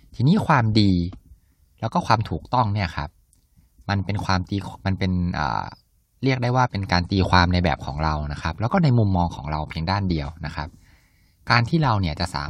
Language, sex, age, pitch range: Thai, male, 20-39, 85-115 Hz